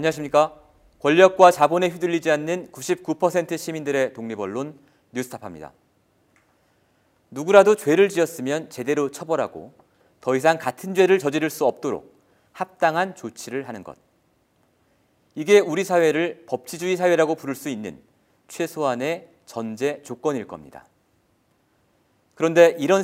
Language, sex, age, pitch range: Korean, male, 40-59, 135-180 Hz